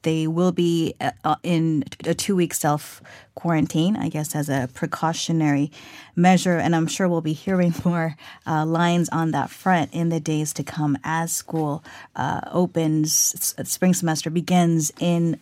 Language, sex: Korean, female